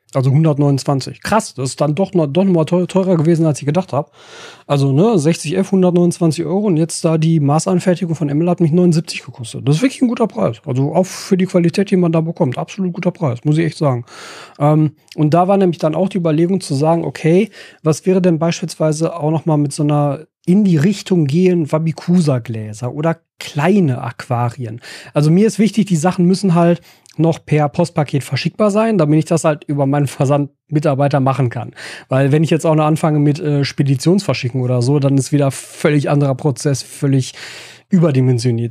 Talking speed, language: 195 wpm, German